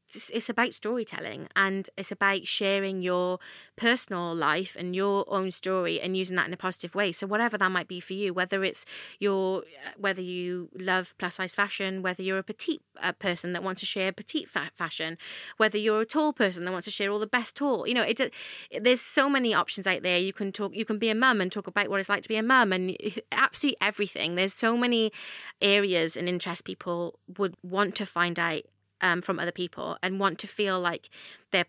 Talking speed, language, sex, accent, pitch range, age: 220 wpm, English, female, British, 175-205 Hz, 20-39